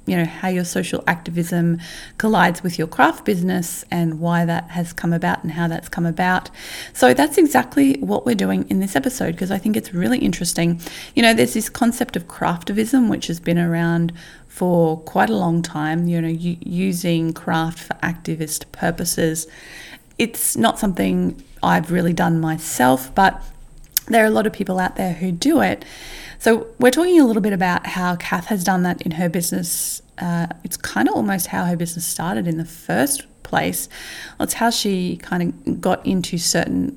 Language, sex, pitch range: English, female, 165-195 Hz